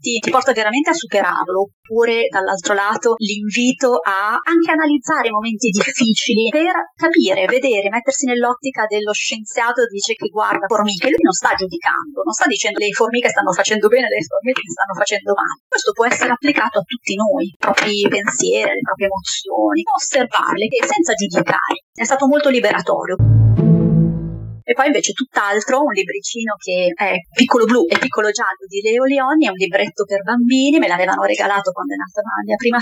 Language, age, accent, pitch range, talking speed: Italian, 30-49, native, 200-290 Hz, 175 wpm